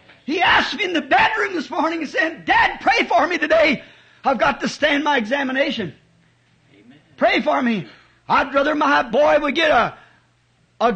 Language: English